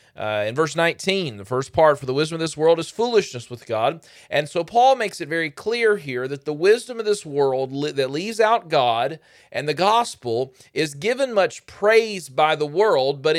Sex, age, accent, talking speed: male, 40-59, American, 205 wpm